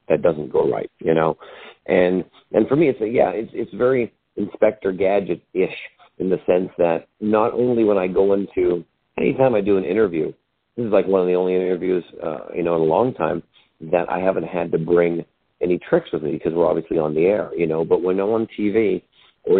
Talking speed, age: 225 wpm, 50-69